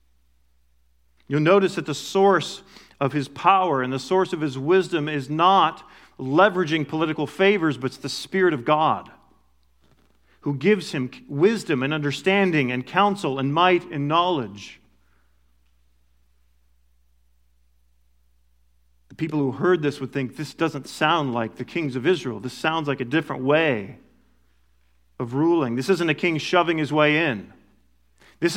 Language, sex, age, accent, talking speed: English, male, 40-59, American, 145 wpm